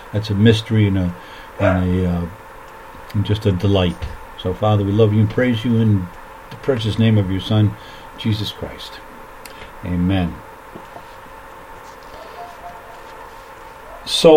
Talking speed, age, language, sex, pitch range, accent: 130 wpm, 50-69, English, male, 100-125 Hz, American